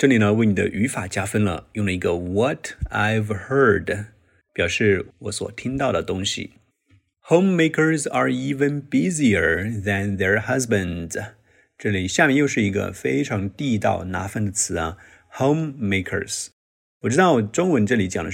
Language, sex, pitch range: Chinese, male, 95-125 Hz